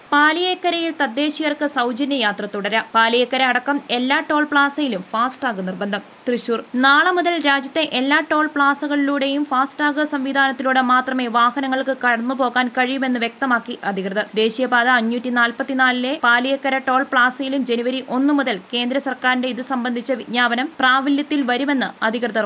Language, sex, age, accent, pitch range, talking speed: Malayalam, female, 20-39, native, 235-280 Hz, 115 wpm